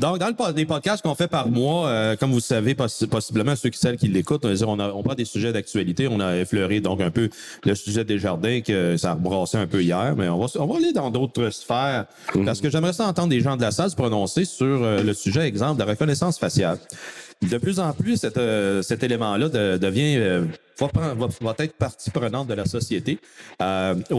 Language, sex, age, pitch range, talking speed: French, male, 40-59, 110-150 Hz, 230 wpm